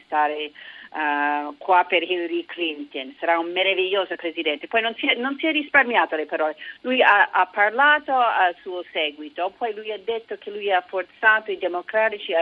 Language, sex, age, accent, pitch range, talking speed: Italian, female, 40-59, native, 155-195 Hz, 170 wpm